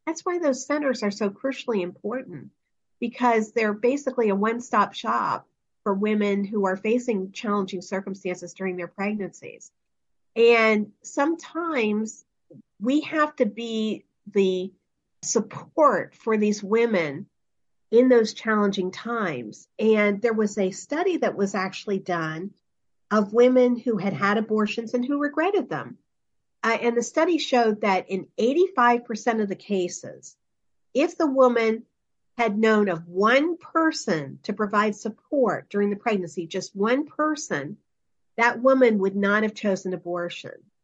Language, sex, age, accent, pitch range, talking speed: English, female, 50-69, American, 205-260 Hz, 140 wpm